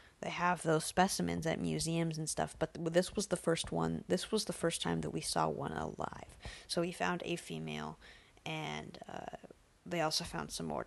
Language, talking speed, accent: English, 200 wpm, American